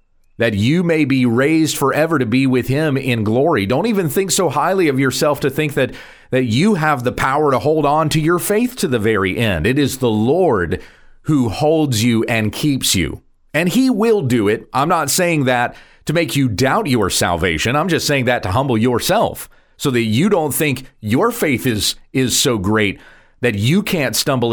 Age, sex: 30-49, male